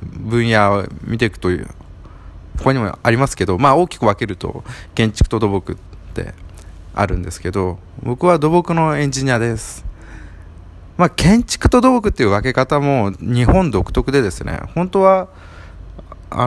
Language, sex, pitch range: Japanese, male, 85-120 Hz